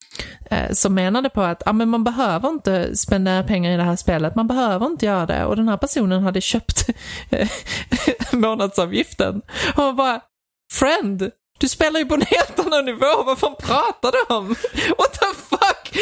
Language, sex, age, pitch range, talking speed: Swedish, male, 20-39, 210-290 Hz, 170 wpm